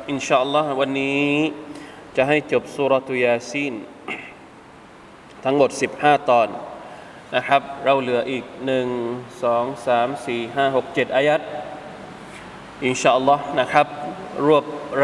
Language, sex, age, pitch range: Thai, male, 20-39, 130-145 Hz